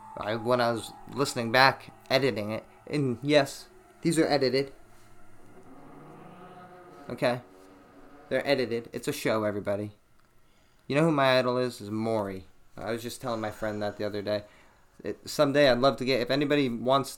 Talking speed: 155 wpm